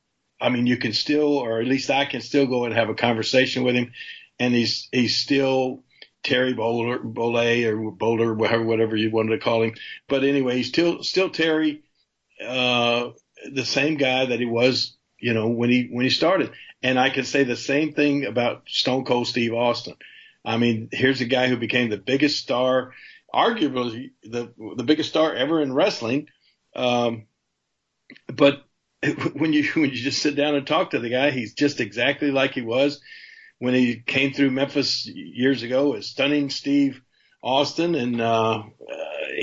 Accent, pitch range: American, 115-140 Hz